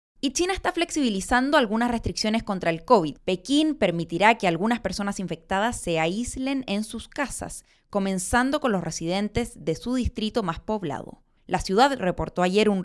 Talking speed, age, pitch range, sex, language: 160 wpm, 20-39, 195-265 Hz, female, Spanish